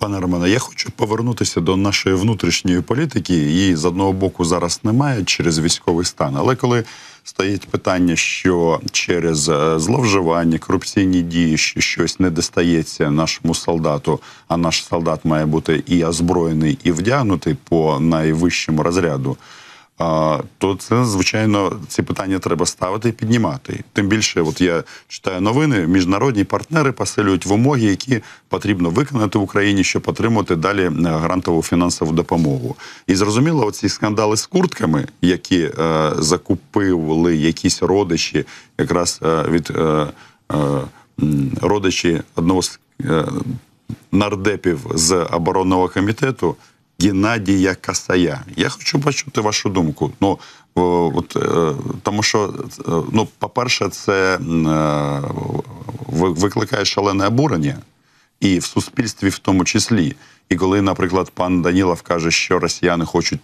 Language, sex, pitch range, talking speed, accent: Ukrainian, male, 85-105 Hz, 125 wpm, native